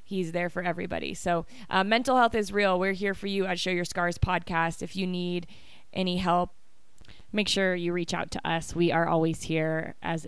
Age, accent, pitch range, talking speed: 20-39, American, 175-200 Hz, 210 wpm